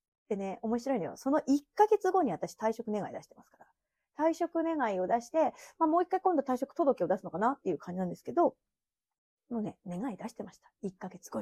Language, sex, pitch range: Japanese, female, 190-260 Hz